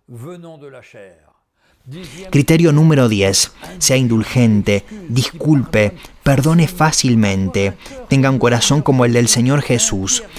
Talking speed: 90 wpm